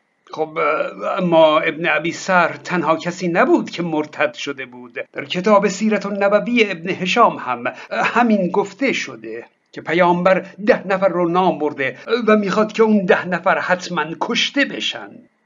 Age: 60-79